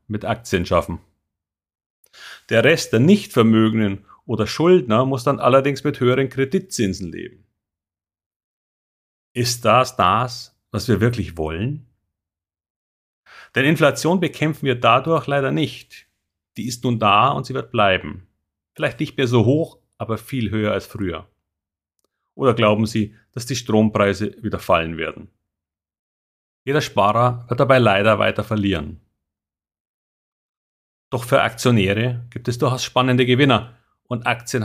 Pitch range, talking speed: 95-125 Hz, 130 wpm